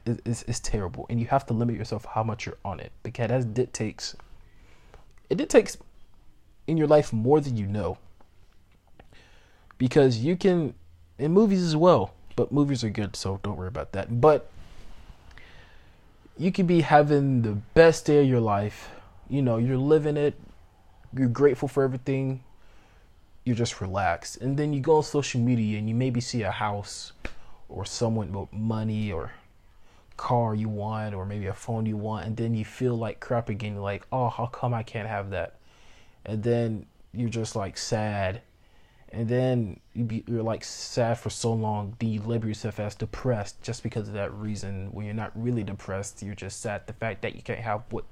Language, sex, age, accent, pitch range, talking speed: English, male, 20-39, American, 100-125 Hz, 185 wpm